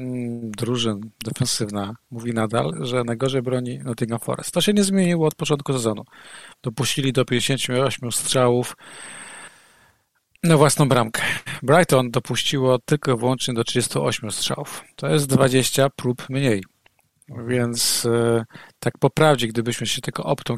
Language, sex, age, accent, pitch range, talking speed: Polish, male, 40-59, native, 115-135 Hz, 130 wpm